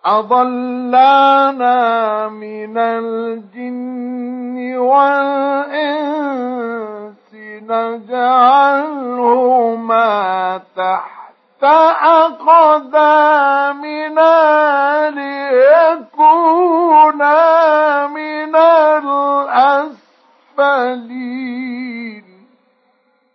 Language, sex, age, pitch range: Arabic, male, 50-69, 250-310 Hz